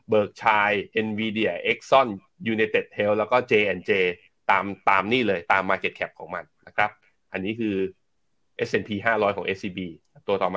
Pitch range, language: 100-125 Hz, Thai